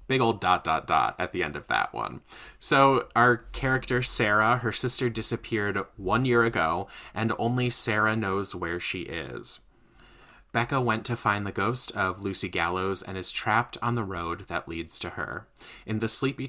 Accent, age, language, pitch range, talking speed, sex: American, 20-39, English, 90-115 Hz, 180 wpm, male